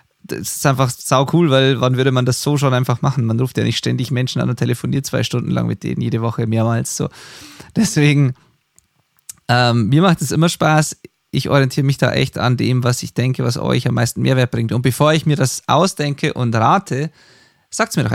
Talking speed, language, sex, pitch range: 215 wpm, German, male, 125-145 Hz